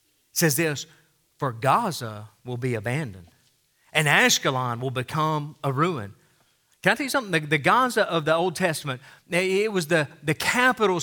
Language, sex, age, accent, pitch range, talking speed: English, male, 40-59, American, 135-185 Hz, 165 wpm